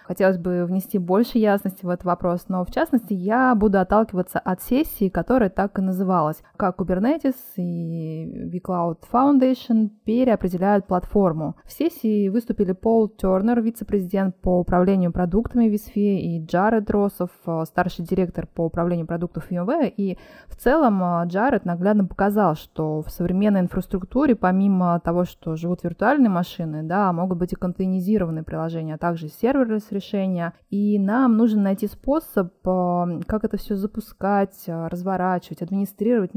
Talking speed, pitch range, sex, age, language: 135 wpm, 175-215 Hz, female, 20-39, Russian